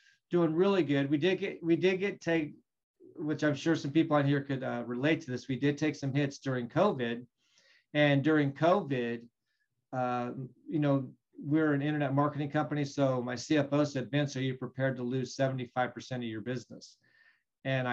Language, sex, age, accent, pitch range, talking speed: English, male, 40-59, American, 130-160 Hz, 185 wpm